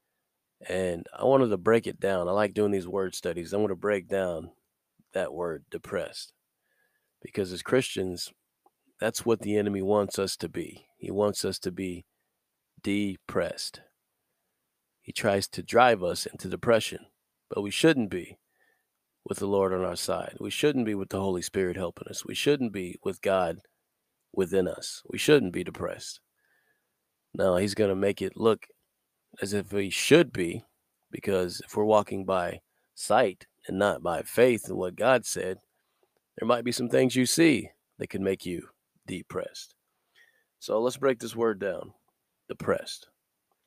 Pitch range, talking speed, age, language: 95-115 Hz, 165 wpm, 40-59, English